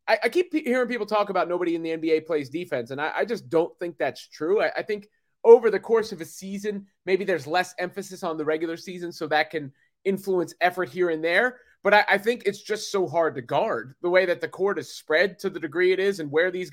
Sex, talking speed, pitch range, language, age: male, 240 wpm, 160-200 Hz, English, 30-49